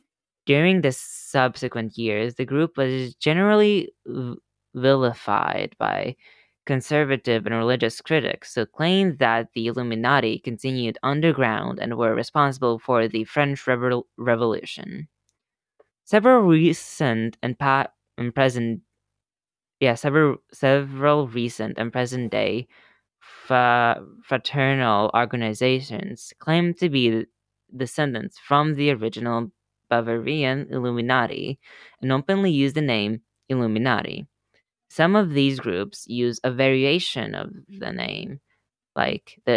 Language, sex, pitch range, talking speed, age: English, female, 115-140 Hz, 110 wpm, 20-39